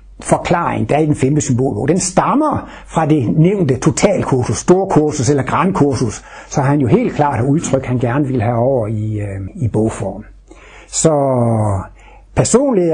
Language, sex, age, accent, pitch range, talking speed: Danish, male, 60-79, native, 125-175 Hz, 145 wpm